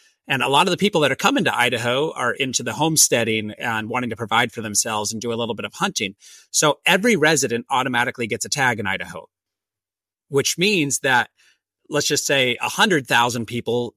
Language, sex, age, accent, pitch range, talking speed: English, male, 30-49, American, 110-150 Hz, 195 wpm